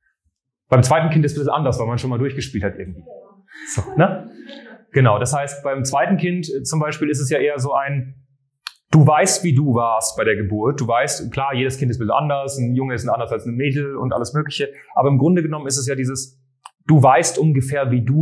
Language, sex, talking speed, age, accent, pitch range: German, male, 235 wpm, 30-49, German, 125-145 Hz